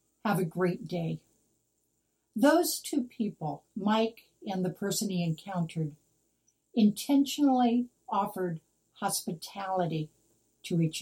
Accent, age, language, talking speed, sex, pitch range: American, 60-79, English, 100 wpm, female, 165-240 Hz